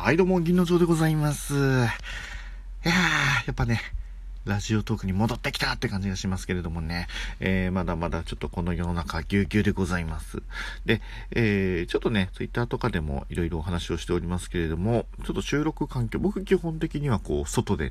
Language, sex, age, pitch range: Japanese, male, 40-59, 85-115 Hz